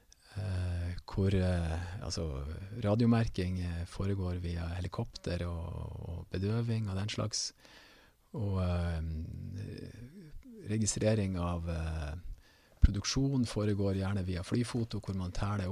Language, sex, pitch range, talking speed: English, male, 95-120 Hz, 100 wpm